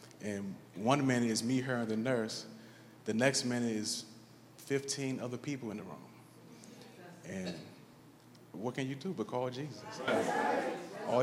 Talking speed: 150 wpm